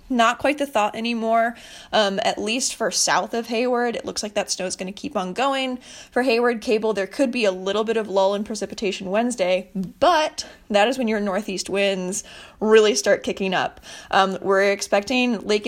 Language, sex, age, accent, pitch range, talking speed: English, female, 20-39, American, 190-230 Hz, 200 wpm